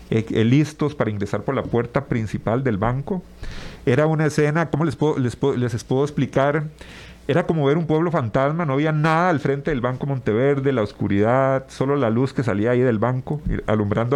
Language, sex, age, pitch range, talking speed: Spanish, male, 40-59, 110-145 Hz, 190 wpm